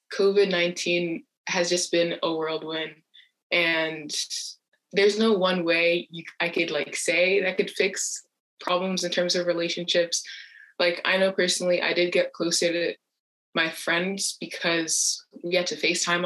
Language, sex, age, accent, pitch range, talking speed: English, female, 20-39, American, 165-190 Hz, 150 wpm